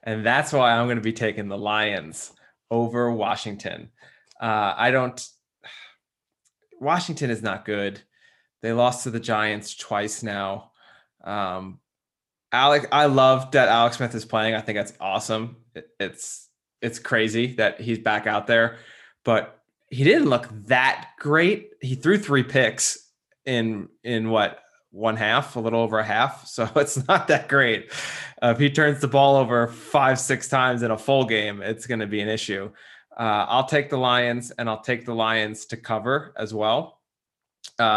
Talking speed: 175 wpm